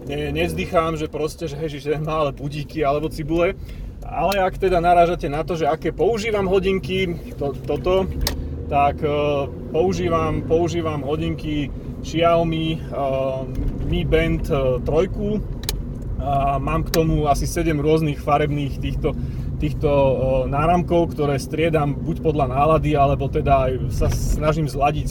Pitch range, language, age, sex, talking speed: 130-160 Hz, Slovak, 30-49, male, 135 wpm